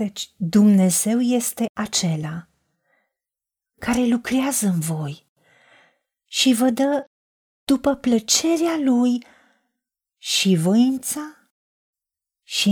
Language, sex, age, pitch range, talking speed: Romanian, female, 40-59, 205-270 Hz, 80 wpm